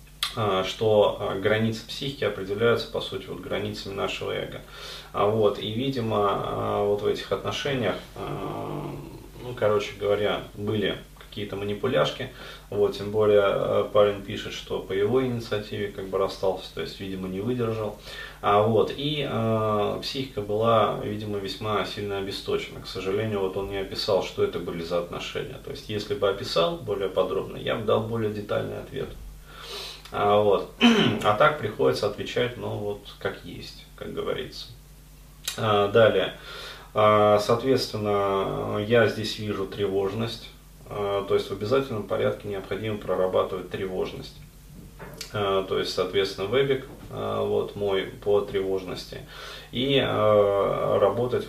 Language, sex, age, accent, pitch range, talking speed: Russian, male, 30-49, native, 100-120 Hz, 125 wpm